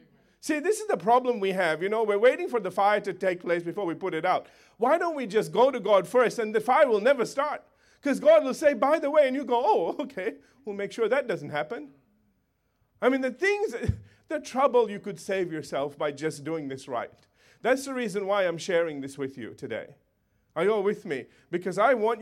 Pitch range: 165-250 Hz